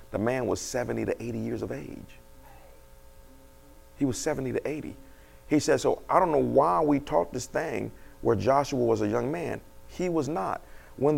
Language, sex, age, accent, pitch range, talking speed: English, male, 40-59, American, 140-205 Hz, 190 wpm